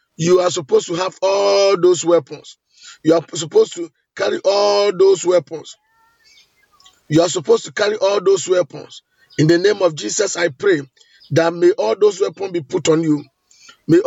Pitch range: 165-230 Hz